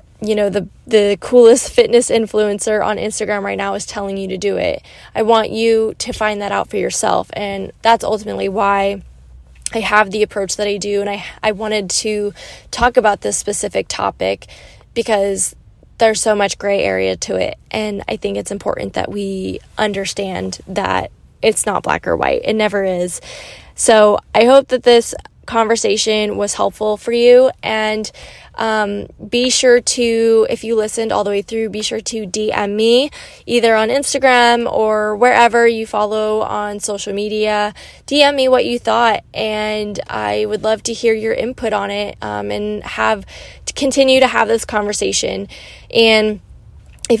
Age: 10-29